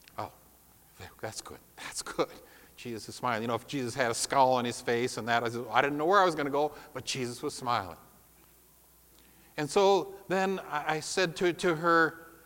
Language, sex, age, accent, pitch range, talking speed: English, male, 50-69, American, 130-185 Hz, 190 wpm